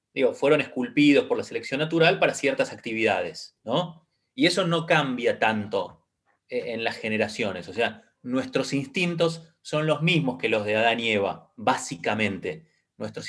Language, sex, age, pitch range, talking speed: Spanish, male, 30-49, 140-190 Hz, 155 wpm